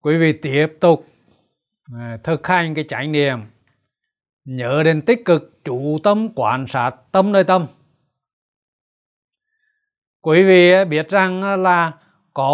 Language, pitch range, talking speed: Vietnamese, 140-195 Hz, 125 wpm